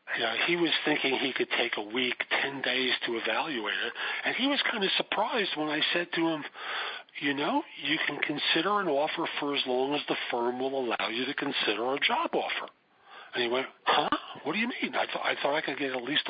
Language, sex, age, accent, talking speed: English, male, 50-69, American, 225 wpm